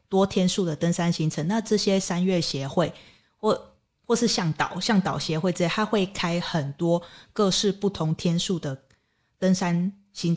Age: 20-39